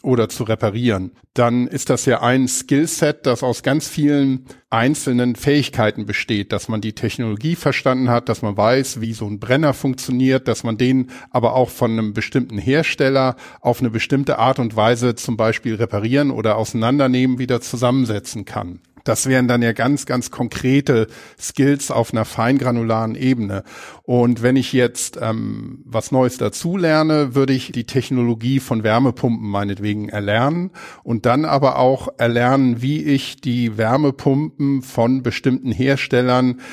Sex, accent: male, German